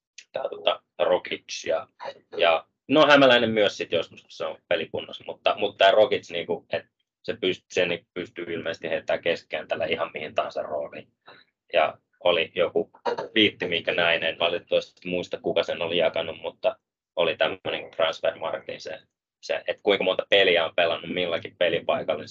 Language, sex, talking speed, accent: Finnish, male, 150 wpm, native